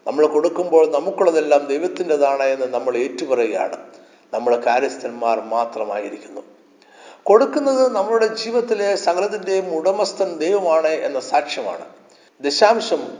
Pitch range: 135-185 Hz